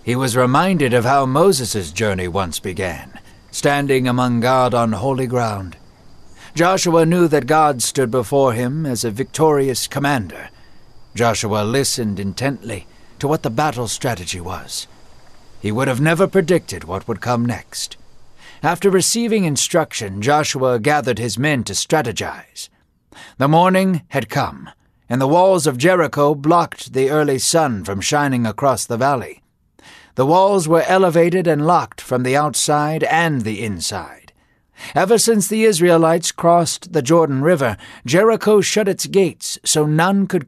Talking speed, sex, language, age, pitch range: 145 wpm, male, English, 60-79, 120-175 Hz